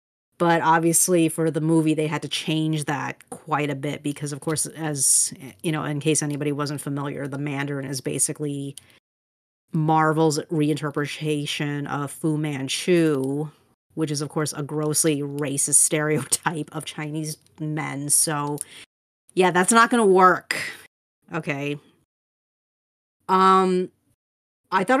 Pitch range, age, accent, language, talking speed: 145-160 Hz, 30-49, American, English, 130 wpm